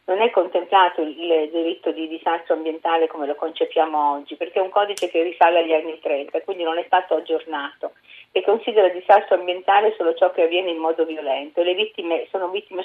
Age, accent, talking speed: 40-59, native, 200 wpm